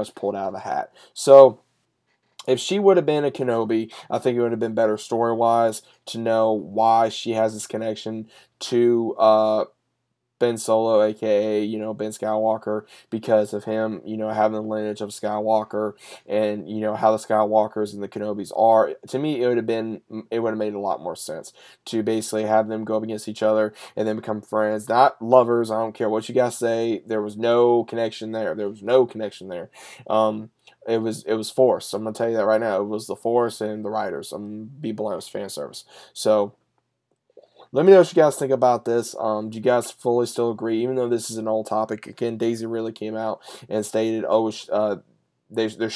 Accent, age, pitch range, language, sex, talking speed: American, 10-29, 110-115 Hz, English, male, 210 wpm